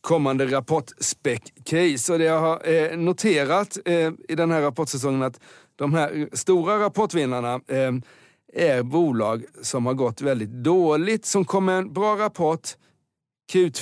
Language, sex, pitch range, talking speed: Swedish, male, 120-155 Hz, 140 wpm